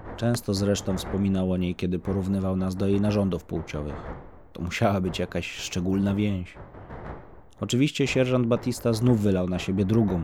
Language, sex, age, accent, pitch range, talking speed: Polish, male, 30-49, native, 90-105 Hz, 150 wpm